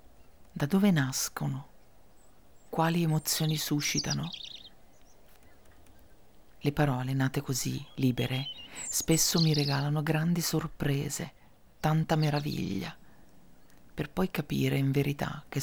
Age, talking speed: 40-59, 90 wpm